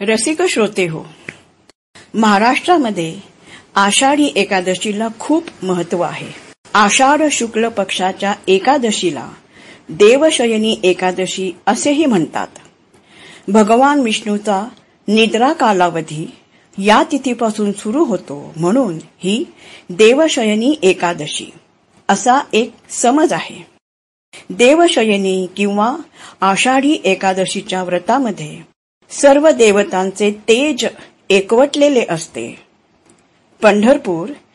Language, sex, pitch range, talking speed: Marathi, female, 190-260 Hz, 75 wpm